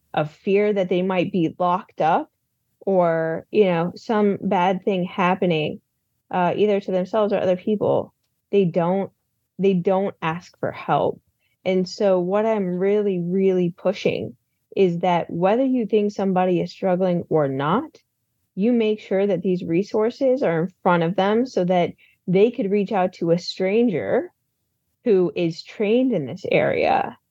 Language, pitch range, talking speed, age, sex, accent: English, 170-205 Hz, 160 wpm, 20-39, female, American